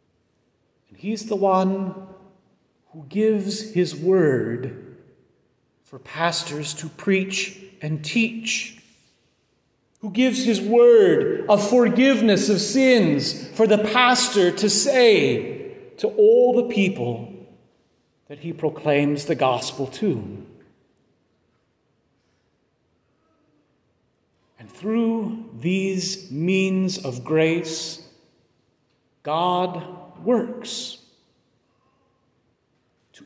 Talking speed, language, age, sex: 80 wpm, English, 40-59, male